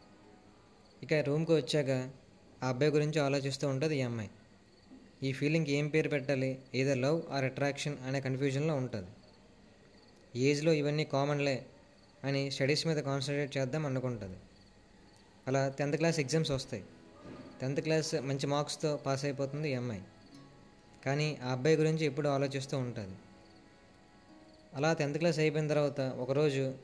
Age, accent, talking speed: 20-39, native, 125 wpm